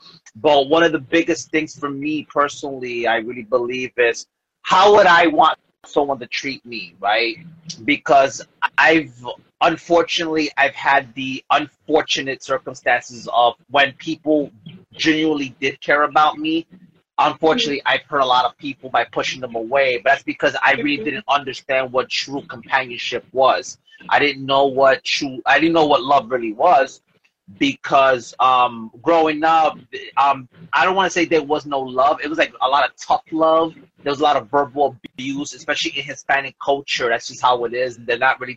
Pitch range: 130-155 Hz